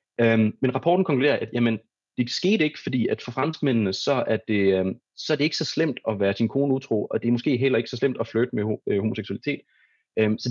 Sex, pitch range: male, 105-130 Hz